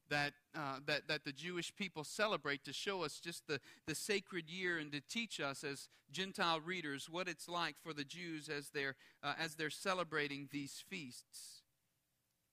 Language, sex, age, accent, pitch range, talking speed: English, male, 40-59, American, 145-190 Hz, 175 wpm